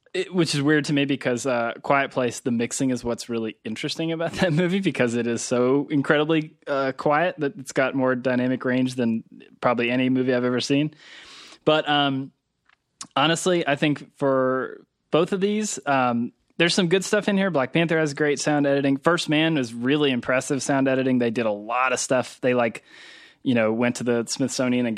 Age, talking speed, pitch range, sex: 20-39, 200 wpm, 120-145 Hz, male